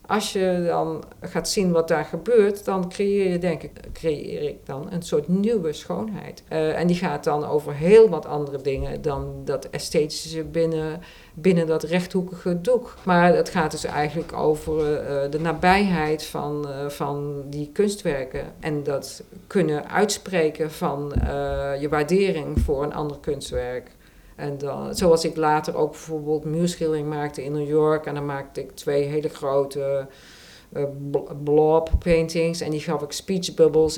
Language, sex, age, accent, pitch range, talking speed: Dutch, female, 50-69, Dutch, 145-175 Hz, 155 wpm